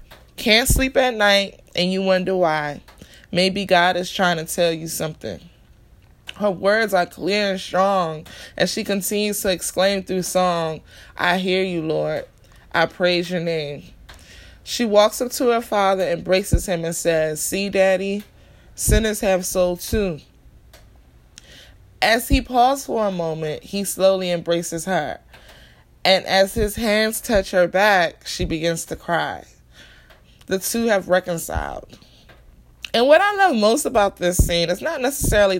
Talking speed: 150 wpm